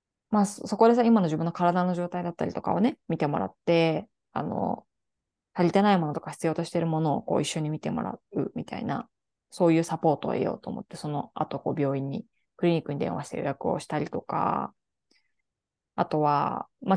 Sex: female